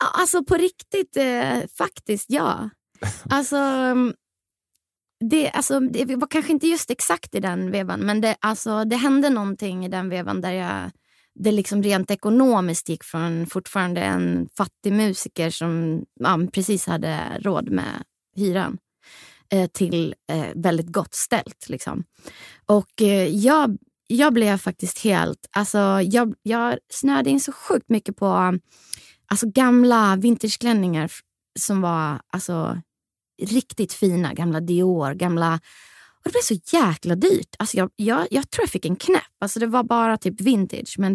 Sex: female